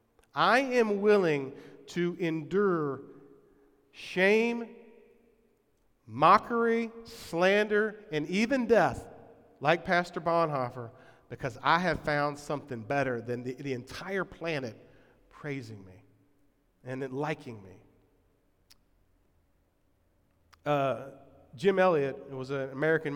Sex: male